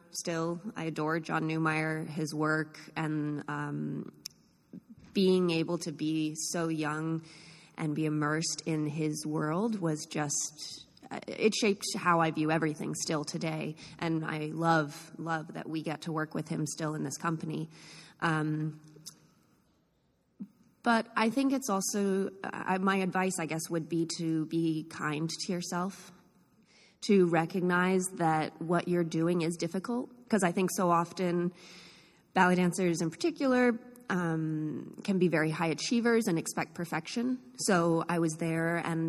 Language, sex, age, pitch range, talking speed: English, female, 20-39, 160-190 Hz, 145 wpm